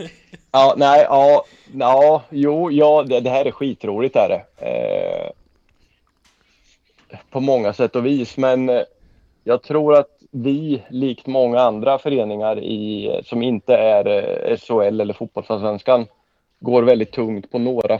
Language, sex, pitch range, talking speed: Swedish, male, 110-140 Hz, 130 wpm